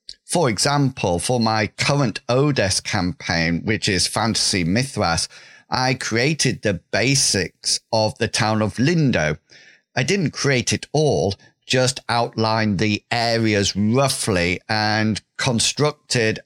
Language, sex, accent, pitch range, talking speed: English, male, British, 105-130 Hz, 115 wpm